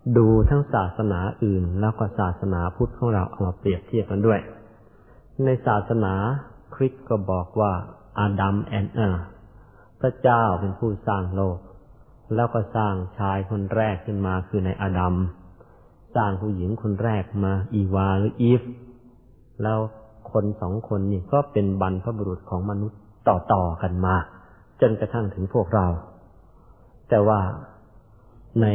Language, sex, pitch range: Thai, male, 95-115 Hz